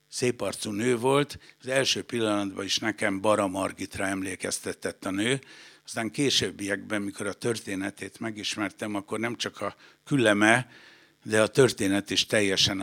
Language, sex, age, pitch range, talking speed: Hungarian, male, 60-79, 100-125 Hz, 140 wpm